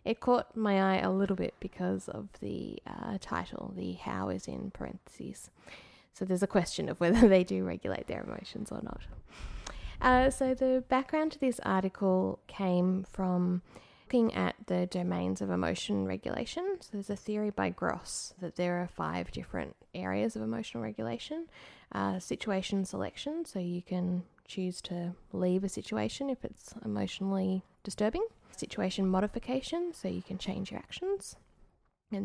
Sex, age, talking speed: female, 10-29, 160 wpm